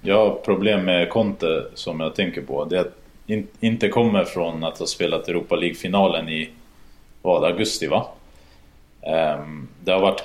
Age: 20-39